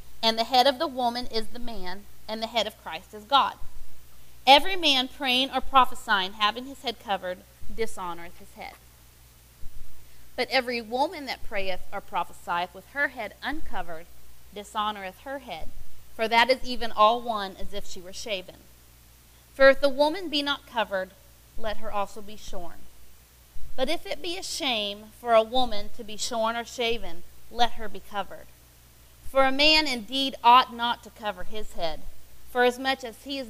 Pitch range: 185-255 Hz